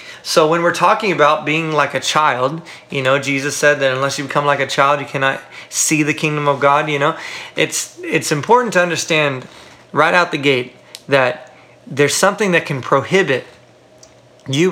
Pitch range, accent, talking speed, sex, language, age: 135-160 Hz, American, 185 wpm, male, English, 30-49